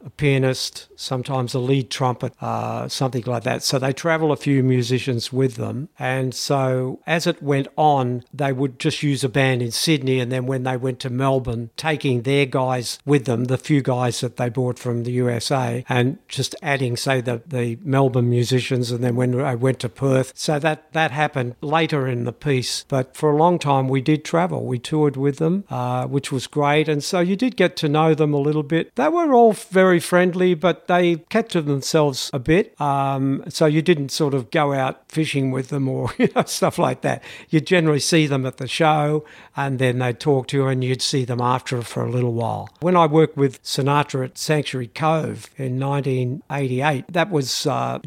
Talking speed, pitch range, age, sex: 210 wpm, 125-150 Hz, 60-79, male